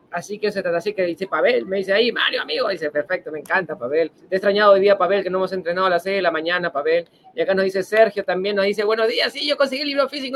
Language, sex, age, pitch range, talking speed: Spanish, male, 30-49, 180-225 Hz, 295 wpm